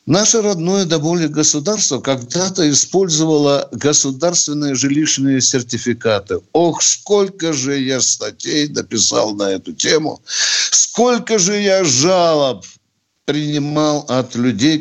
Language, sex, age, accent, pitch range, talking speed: Russian, male, 60-79, native, 125-175 Hz, 100 wpm